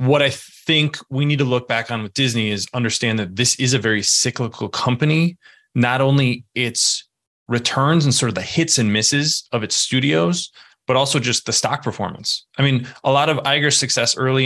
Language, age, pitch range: English, 20-39, 110-135 Hz